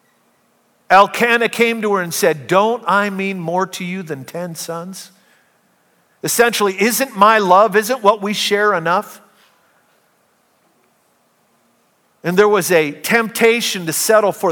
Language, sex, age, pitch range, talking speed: English, male, 50-69, 165-215 Hz, 130 wpm